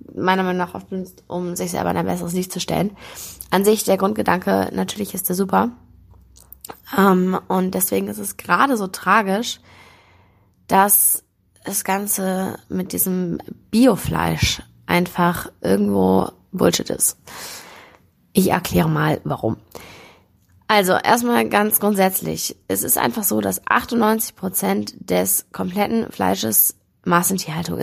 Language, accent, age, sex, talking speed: German, German, 20-39, female, 125 wpm